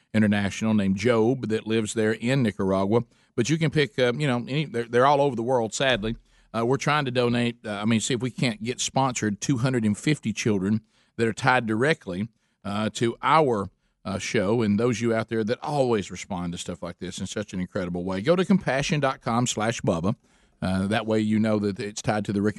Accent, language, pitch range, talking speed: American, English, 100-120 Hz, 215 wpm